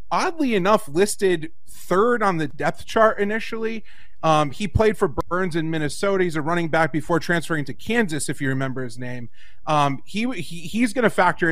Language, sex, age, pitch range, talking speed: English, male, 30-49, 155-195 Hz, 190 wpm